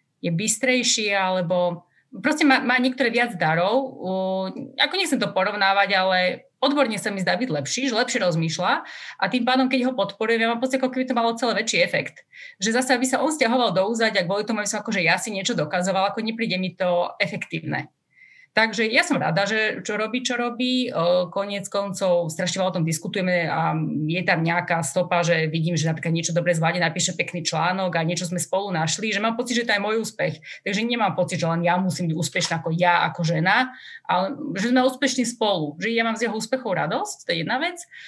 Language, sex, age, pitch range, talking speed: Slovak, female, 30-49, 175-230 Hz, 215 wpm